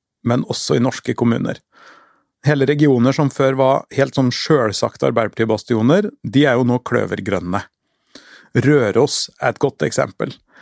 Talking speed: 145 wpm